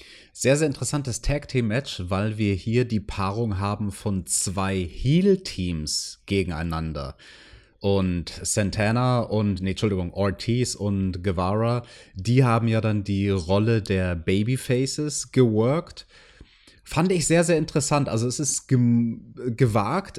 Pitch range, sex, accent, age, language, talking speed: 100-135 Hz, male, German, 30-49, German, 120 wpm